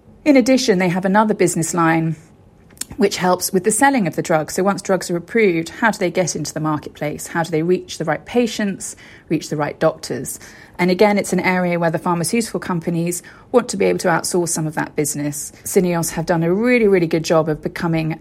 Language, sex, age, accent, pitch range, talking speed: English, female, 30-49, British, 165-200 Hz, 220 wpm